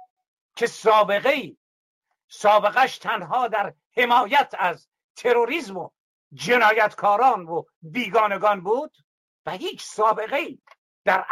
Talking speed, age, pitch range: 90 wpm, 60-79, 185-245 Hz